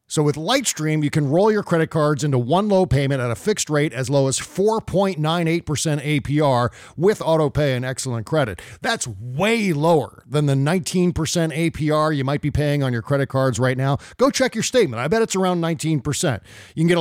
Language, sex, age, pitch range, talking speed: English, male, 40-59, 135-170 Hz, 200 wpm